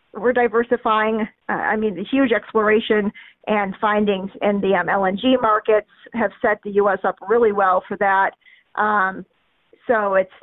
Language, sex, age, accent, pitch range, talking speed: English, female, 40-59, American, 195-240 Hz, 160 wpm